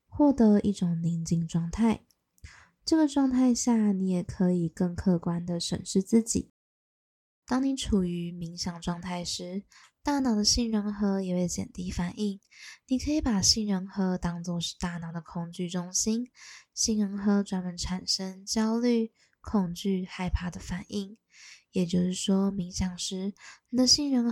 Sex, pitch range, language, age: female, 180-220 Hz, Chinese, 10-29